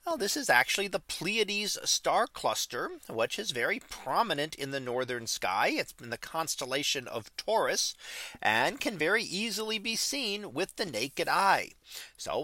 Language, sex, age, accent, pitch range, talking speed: English, male, 40-59, American, 130-200 Hz, 160 wpm